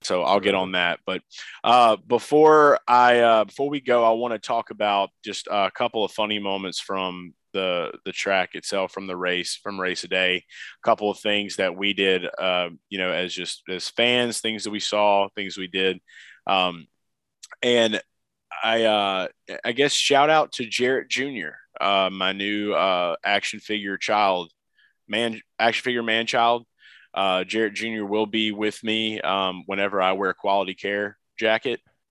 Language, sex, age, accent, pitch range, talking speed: English, male, 20-39, American, 95-110 Hz, 180 wpm